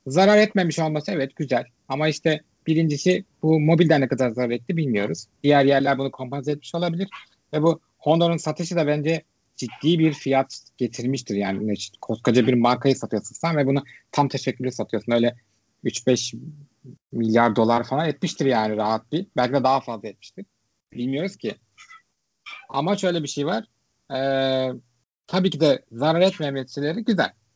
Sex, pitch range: male, 130-175 Hz